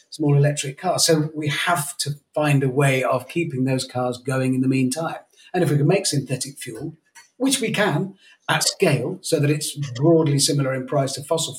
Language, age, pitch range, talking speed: English, 40-59, 125-155 Hz, 200 wpm